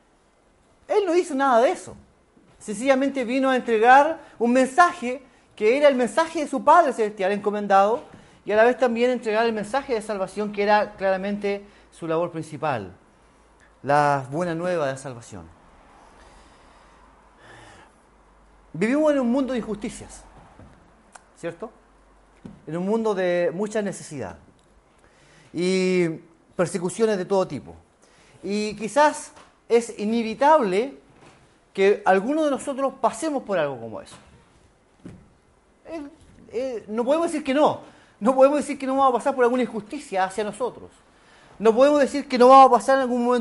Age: 40-59